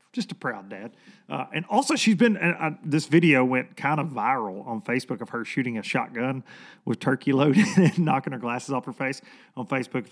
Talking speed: 215 wpm